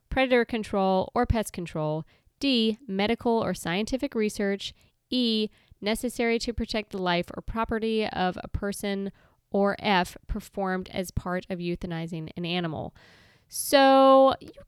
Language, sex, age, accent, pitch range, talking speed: English, female, 20-39, American, 175-220 Hz, 130 wpm